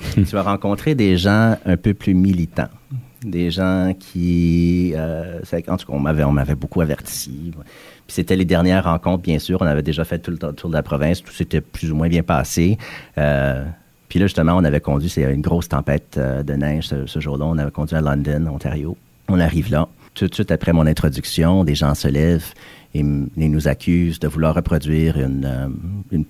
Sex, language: male, French